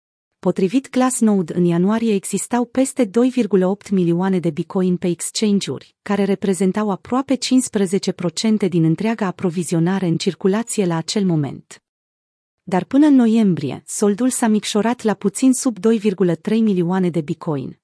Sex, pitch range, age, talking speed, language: female, 175-225 Hz, 30-49, 130 wpm, Romanian